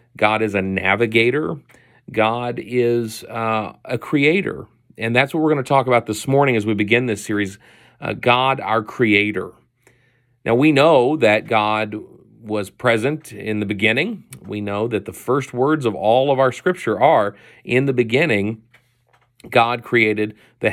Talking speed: 160 wpm